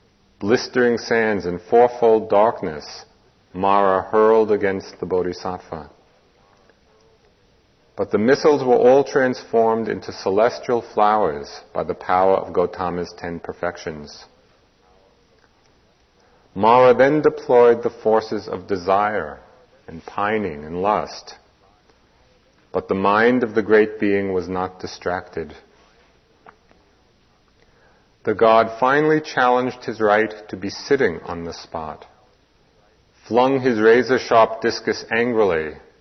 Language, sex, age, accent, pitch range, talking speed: English, male, 40-59, American, 100-120 Hz, 105 wpm